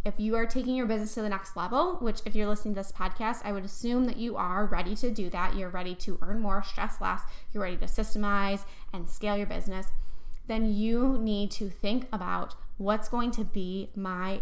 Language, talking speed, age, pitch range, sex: English, 220 wpm, 10-29, 200-235 Hz, female